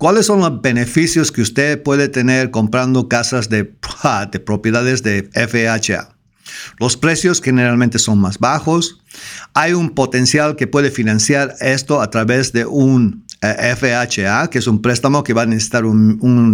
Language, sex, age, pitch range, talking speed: English, male, 50-69, 115-150 Hz, 155 wpm